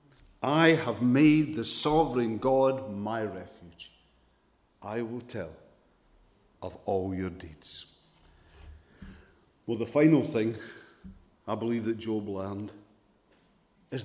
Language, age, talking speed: English, 50-69, 105 wpm